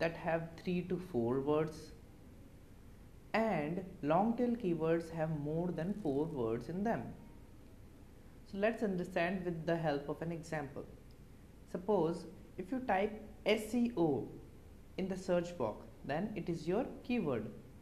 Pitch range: 155-210 Hz